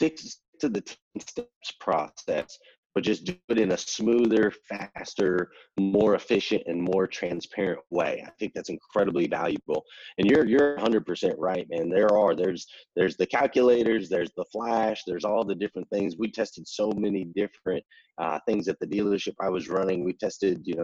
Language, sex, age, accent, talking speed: English, male, 30-49, American, 180 wpm